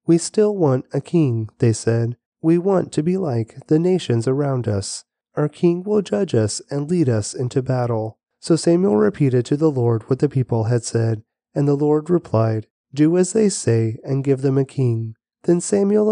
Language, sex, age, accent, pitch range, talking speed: English, male, 30-49, American, 115-150 Hz, 195 wpm